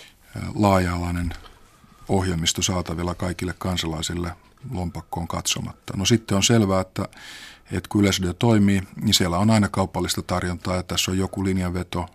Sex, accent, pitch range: male, native, 90-100 Hz